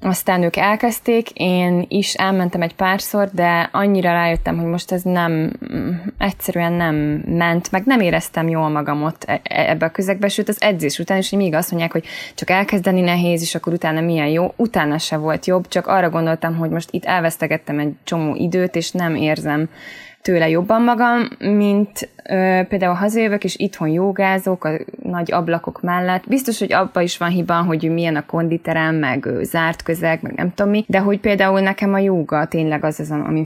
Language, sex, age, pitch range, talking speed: Hungarian, female, 20-39, 160-190 Hz, 180 wpm